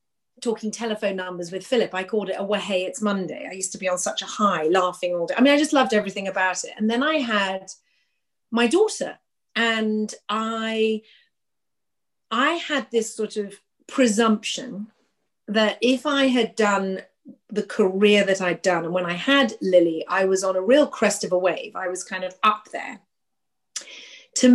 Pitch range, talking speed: 190-245 Hz, 190 wpm